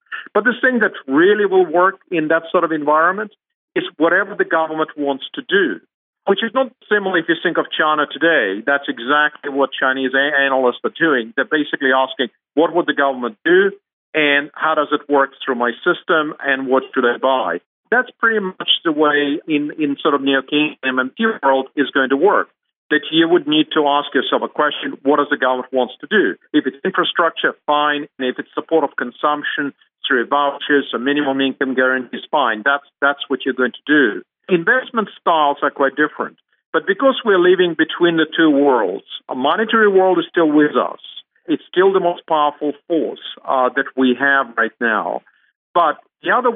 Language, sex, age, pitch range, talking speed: English, male, 50-69, 140-185 Hz, 190 wpm